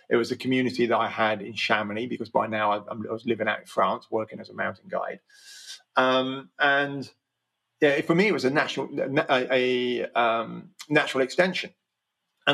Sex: male